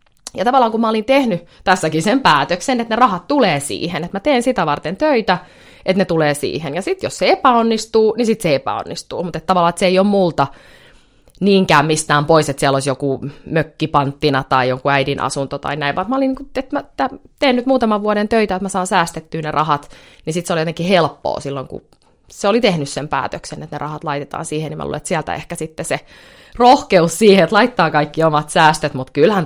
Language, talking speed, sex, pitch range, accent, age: Finnish, 215 wpm, female, 145-200 Hz, native, 20-39